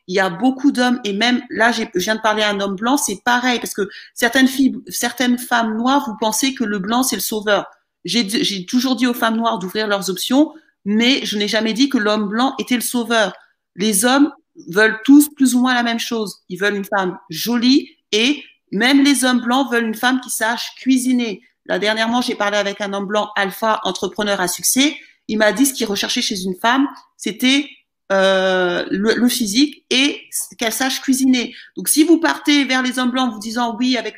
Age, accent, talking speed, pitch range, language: 40-59, French, 215 wpm, 210-260 Hz, French